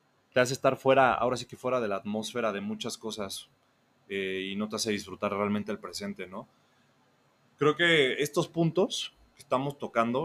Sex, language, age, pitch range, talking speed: male, Spanish, 20-39, 105-130 Hz, 180 wpm